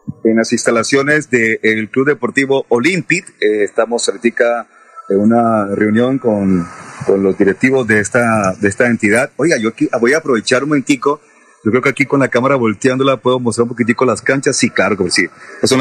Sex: male